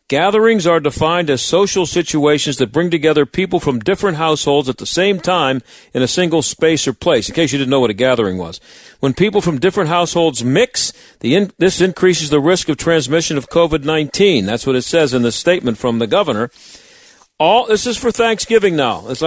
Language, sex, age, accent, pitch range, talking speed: English, male, 50-69, American, 145-195 Hz, 200 wpm